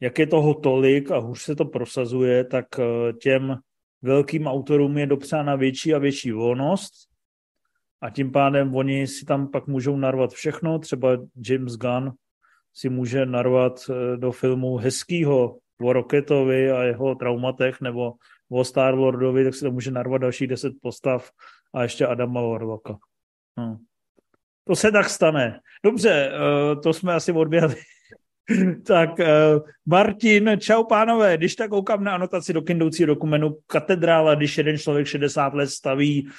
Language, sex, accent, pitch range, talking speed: Czech, male, native, 130-160 Hz, 145 wpm